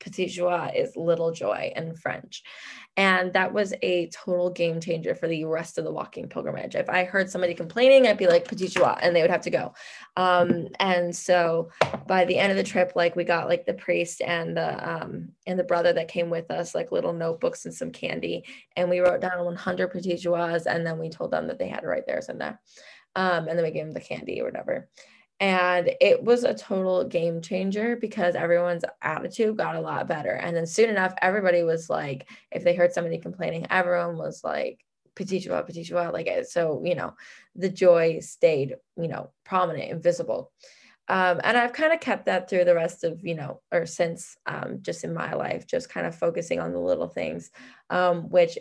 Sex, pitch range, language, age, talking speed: female, 170-190 Hz, English, 20-39, 210 wpm